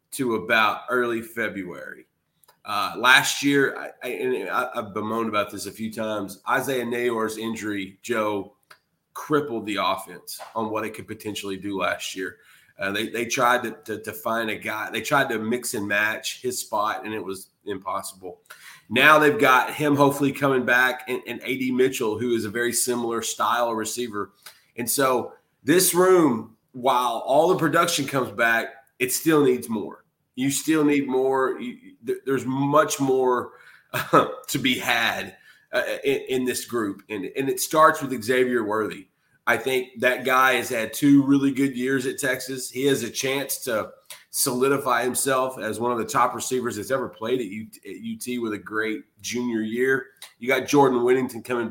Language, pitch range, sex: English, 115-140 Hz, male